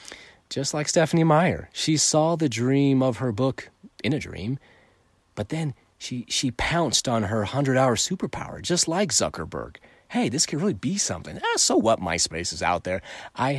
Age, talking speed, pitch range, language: 30-49, 180 wpm, 95-140 Hz, English